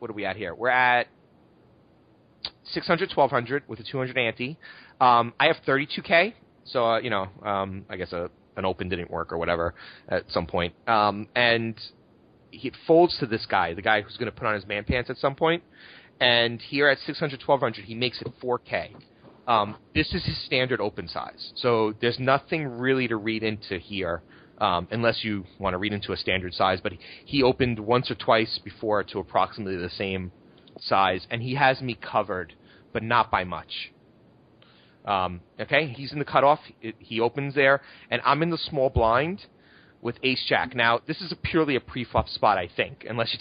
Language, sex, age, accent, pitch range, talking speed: English, male, 30-49, American, 100-135 Hz, 200 wpm